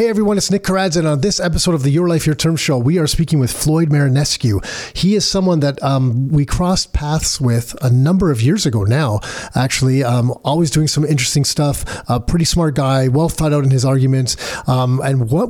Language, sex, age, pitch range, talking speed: English, male, 40-59, 135-160 Hz, 215 wpm